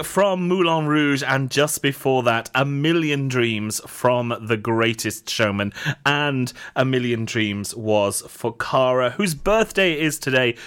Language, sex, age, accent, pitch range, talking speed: English, male, 30-49, British, 110-140 Hz, 140 wpm